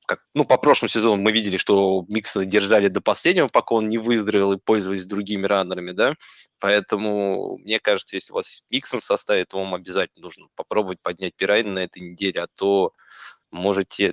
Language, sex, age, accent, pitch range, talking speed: Russian, male, 20-39, native, 95-105 Hz, 185 wpm